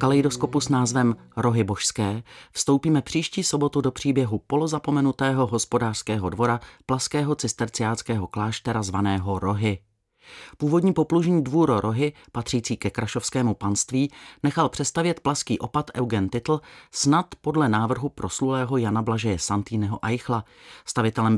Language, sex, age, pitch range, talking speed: Czech, male, 30-49, 110-140 Hz, 115 wpm